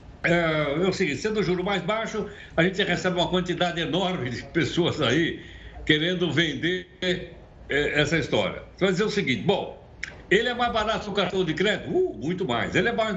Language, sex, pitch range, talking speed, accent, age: Portuguese, male, 165-215 Hz, 190 wpm, Brazilian, 60-79